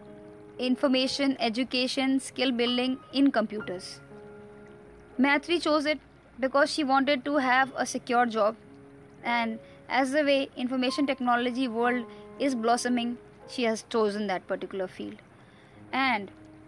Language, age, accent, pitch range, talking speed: Hindi, 20-39, native, 225-285 Hz, 120 wpm